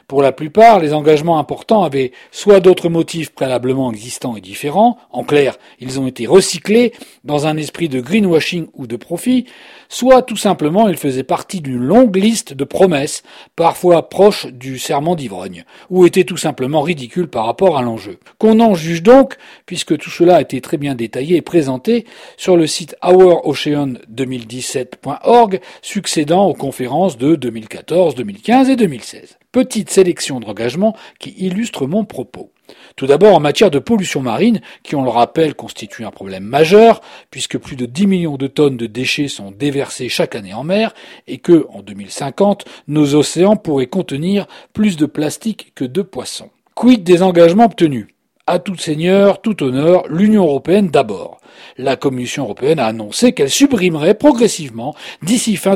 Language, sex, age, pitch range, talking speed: French, male, 40-59, 135-200 Hz, 165 wpm